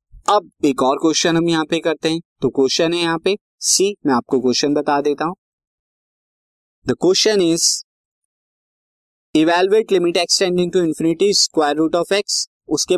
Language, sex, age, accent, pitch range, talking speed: Hindi, male, 20-39, native, 130-170 Hz, 105 wpm